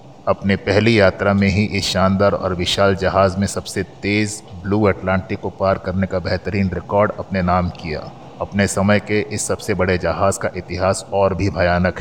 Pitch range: 90-100 Hz